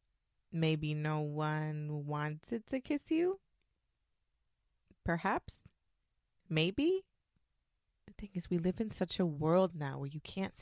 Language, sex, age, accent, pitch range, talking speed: English, female, 20-39, American, 175-245 Hz, 125 wpm